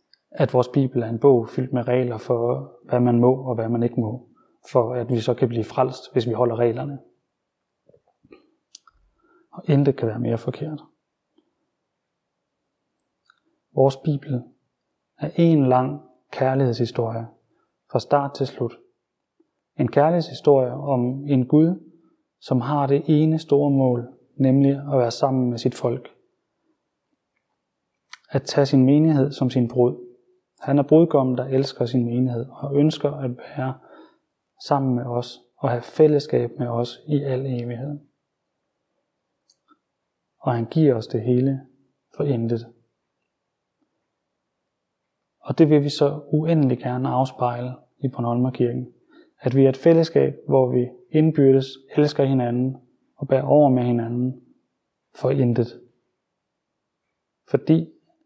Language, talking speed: Danish, 130 wpm